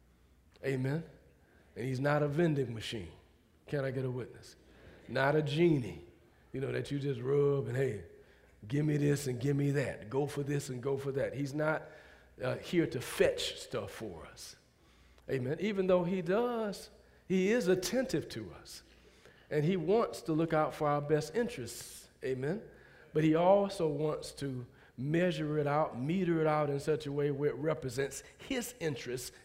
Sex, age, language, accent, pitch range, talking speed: male, 40-59, English, American, 135-175 Hz, 175 wpm